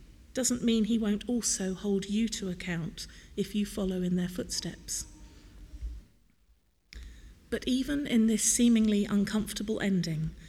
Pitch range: 180-225 Hz